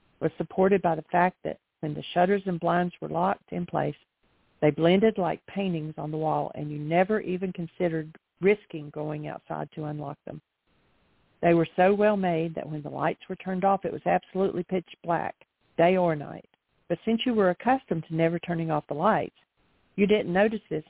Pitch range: 160-195 Hz